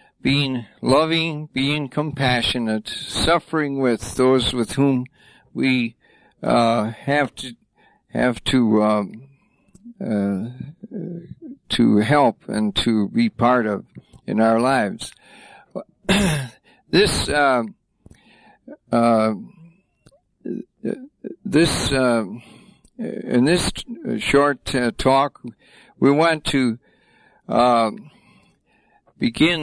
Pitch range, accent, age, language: 115-155 Hz, American, 60-79, English